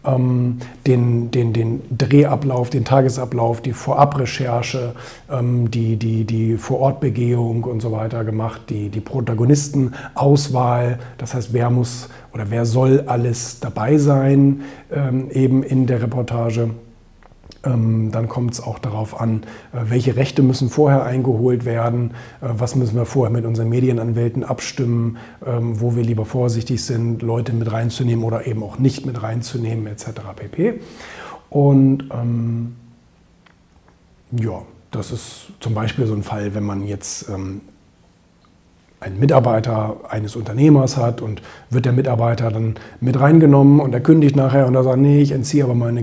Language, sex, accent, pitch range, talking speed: German, male, German, 115-130 Hz, 140 wpm